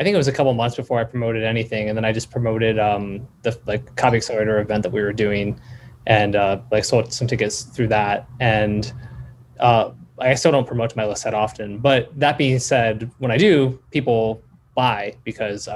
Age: 20-39